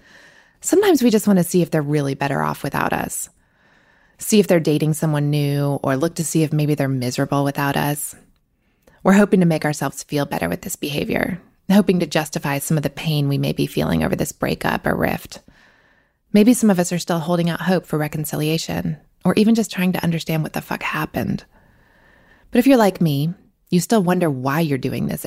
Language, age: English, 20-39